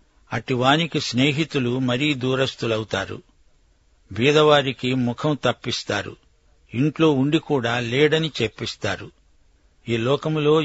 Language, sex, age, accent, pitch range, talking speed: Telugu, male, 60-79, native, 115-140 Hz, 80 wpm